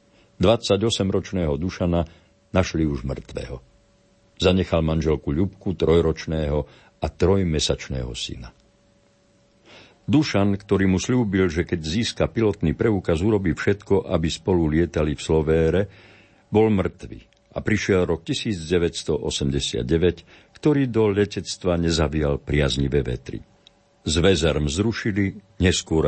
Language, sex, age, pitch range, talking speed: Slovak, male, 60-79, 80-105 Hz, 100 wpm